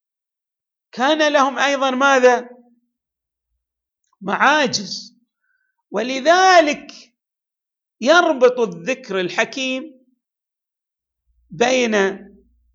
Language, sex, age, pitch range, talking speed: Arabic, male, 50-69, 185-265 Hz, 45 wpm